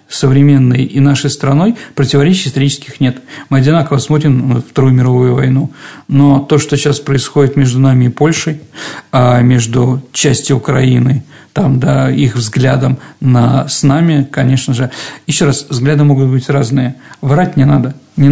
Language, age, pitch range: Russian, 50-69, 135-160 Hz